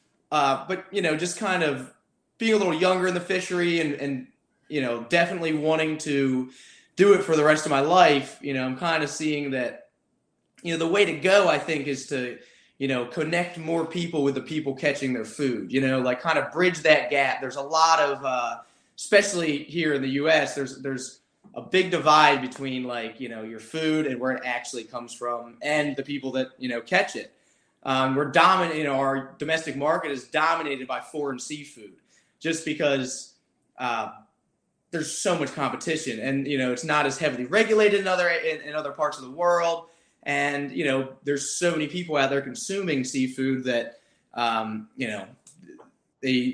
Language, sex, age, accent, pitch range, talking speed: English, male, 20-39, American, 130-165 Hz, 195 wpm